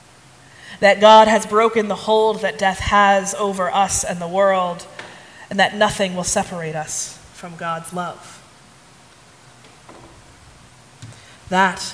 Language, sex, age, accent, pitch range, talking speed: English, female, 20-39, American, 175-210 Hz, 120 wpm